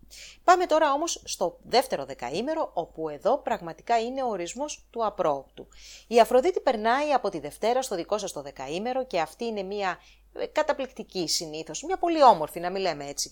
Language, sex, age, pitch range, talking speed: English, female, 30-49, 160-245 Hz, 170 wpm